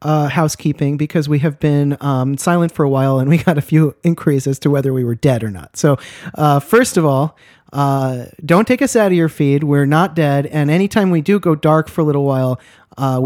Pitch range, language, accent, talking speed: 135-160 Hz, English, American, 235 wpm